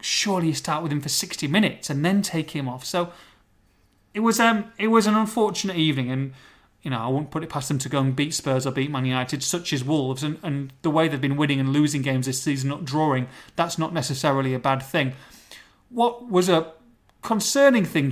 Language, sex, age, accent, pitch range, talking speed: English, male, 30-49, British, 135-170 Hz, 225 wpm